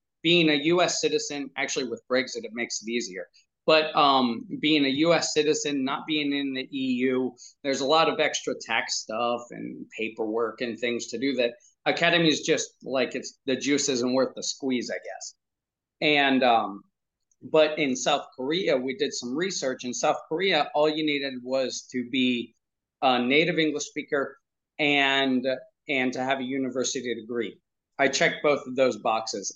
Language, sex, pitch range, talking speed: English, male, 130-155 Hz, 175 wpm